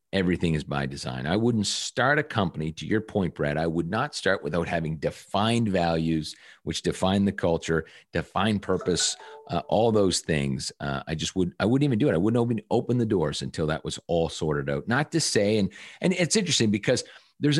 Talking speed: 210 wpm